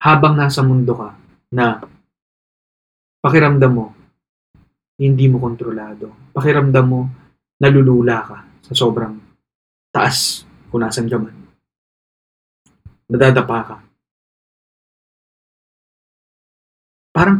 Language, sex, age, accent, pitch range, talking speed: Filipino, male, 20-39, native, 110-135 Hz, 80 wpm